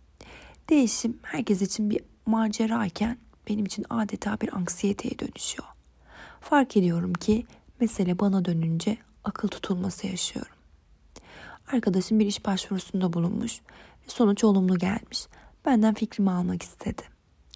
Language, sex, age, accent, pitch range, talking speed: Turkish, female, 30-49, native, 190-230 Hz, 115 wpm